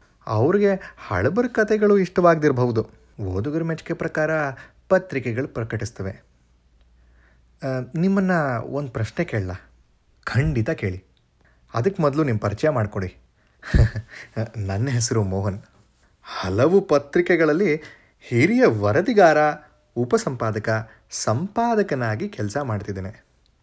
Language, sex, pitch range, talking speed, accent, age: Kannada, male, 100-155 Hz, 80 wpm, native, 30-49